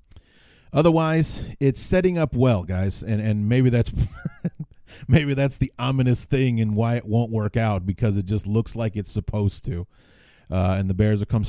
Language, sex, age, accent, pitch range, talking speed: English, male, 30-49, American, 100-120 Hz, 185 wpm